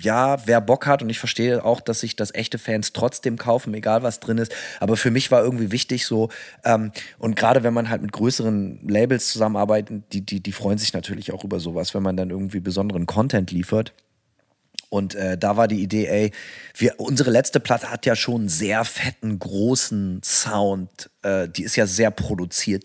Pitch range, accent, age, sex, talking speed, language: 105-125 Hz, German, 30-49, male, 200 wpm, German